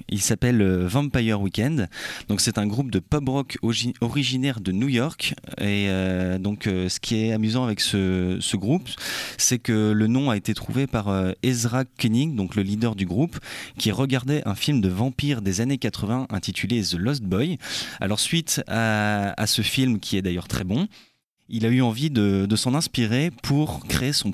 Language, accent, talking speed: French, French, 185 wpm